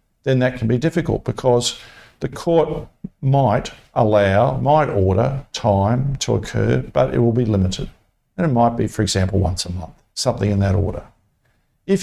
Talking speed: 170 wpm